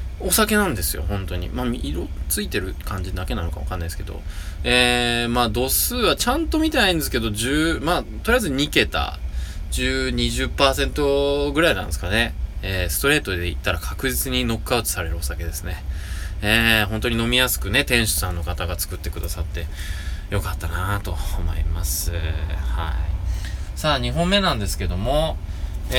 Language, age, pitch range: Japanese, 20-39, 80-130 Hz